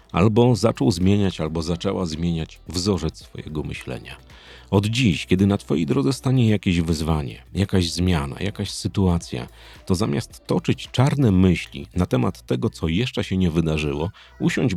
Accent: native